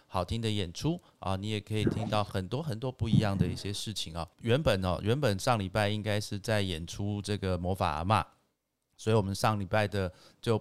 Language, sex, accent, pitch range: Chinese, male, native, 95-125 Hz